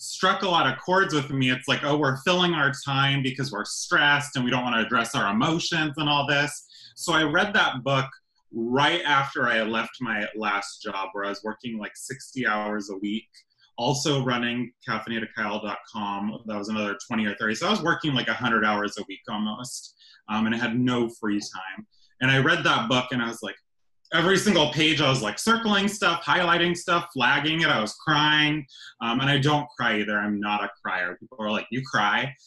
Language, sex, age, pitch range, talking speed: English, male, 20-39, 110-150 Hz, 210 wpm